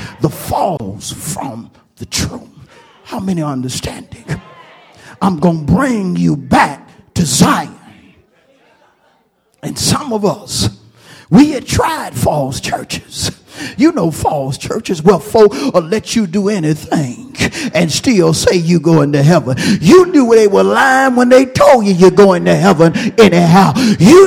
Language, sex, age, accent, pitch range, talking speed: English, male, 50-69, American, 195-270 Hz, 145 wpm